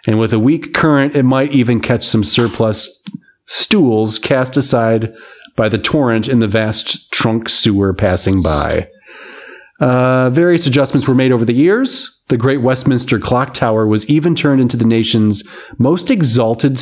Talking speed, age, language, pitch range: 160 wpm, 30-49, English, 110-140 Hz